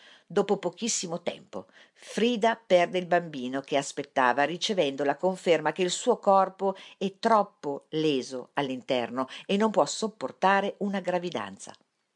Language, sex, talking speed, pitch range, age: Italian, female, 130 wpm, 140-200 Hz, 50-69